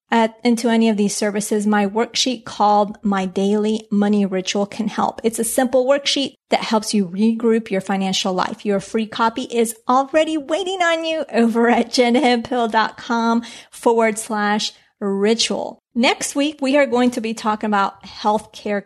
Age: 30-49